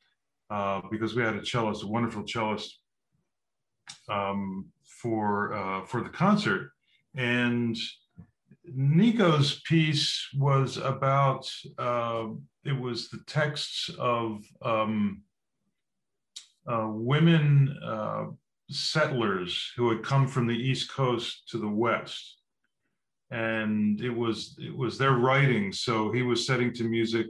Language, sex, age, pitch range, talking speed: English, male, 50-69, 110-140 Hz, 120 wpm